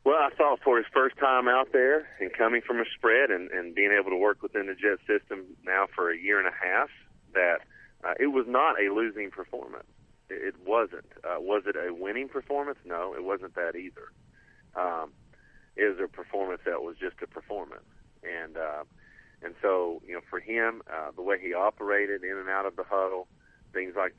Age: 40-59